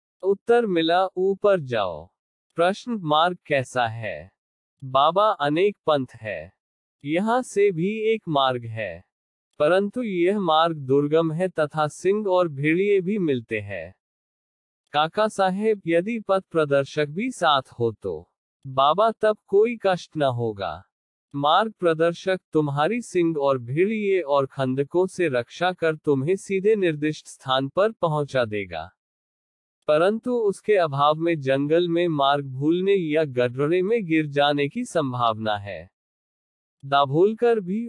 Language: Hindi